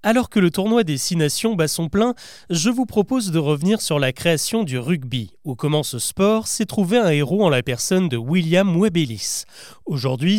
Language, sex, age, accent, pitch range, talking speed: French, male, 30-49, French, 140-200 Hz, 200 wpm